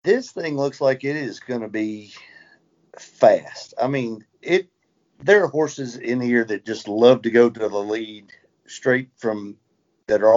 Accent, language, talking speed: American, English, 175 wpm